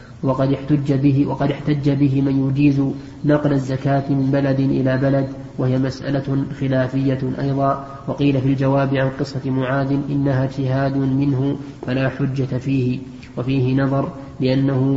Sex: male